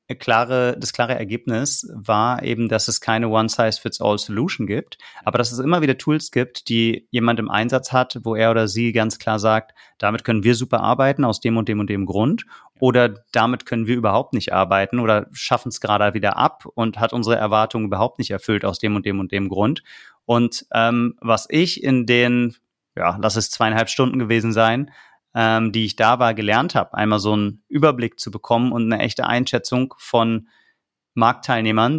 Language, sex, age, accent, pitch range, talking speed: German, male, 30-49, German, 110-125 Hz, 190 wpm